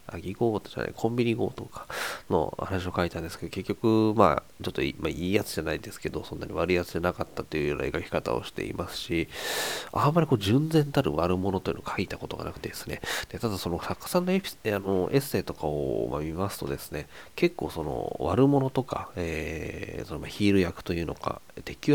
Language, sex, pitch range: Japanese, male, 85-120 Hz